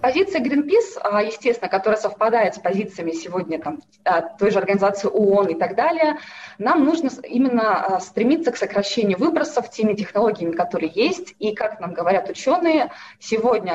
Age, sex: 20-39, female